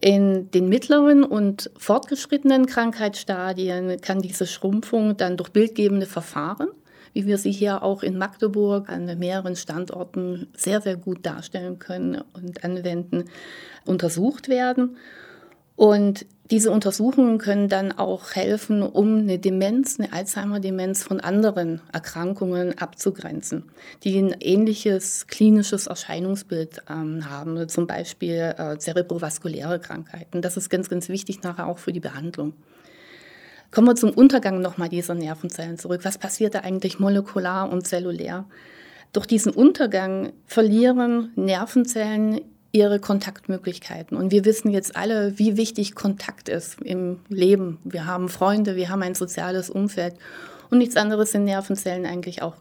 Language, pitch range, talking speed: German, 180-210 Hz, 135 wpm